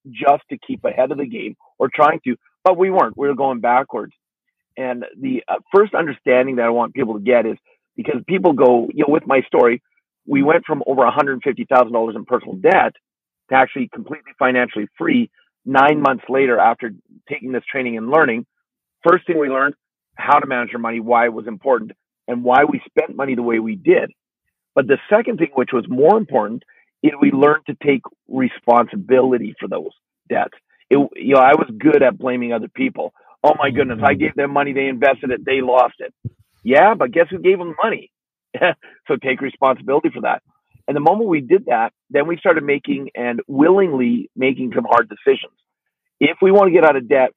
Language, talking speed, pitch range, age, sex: English, 205 wpm, 125-210 Hz, 40-59, male